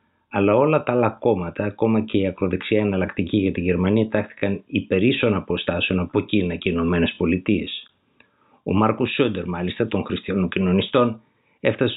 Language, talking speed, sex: Greek, 145 wpm, male